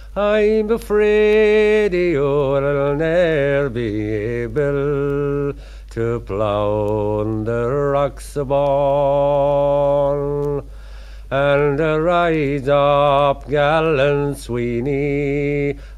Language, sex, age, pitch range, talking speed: English, male, 50-69, 140-195 Hz, 65 wpm